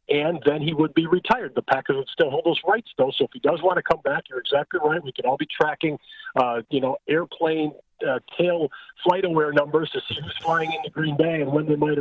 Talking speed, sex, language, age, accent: 245 wpm, male, English, 50-69, American